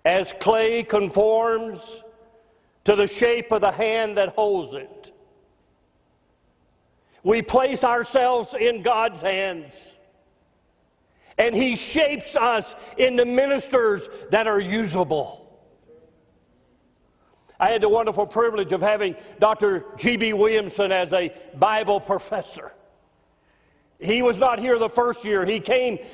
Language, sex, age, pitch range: English, male, 40-59, 200-245 Hz